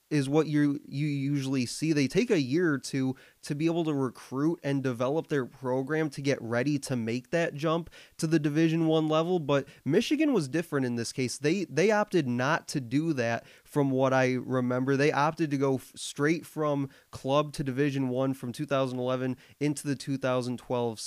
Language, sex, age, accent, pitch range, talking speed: English, male, 20-39, American, 130-155 Hz, 190 wpm